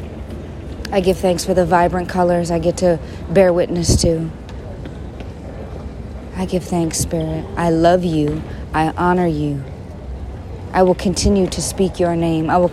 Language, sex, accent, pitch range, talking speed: English, female, American, 160-185 Hz, 150 wpm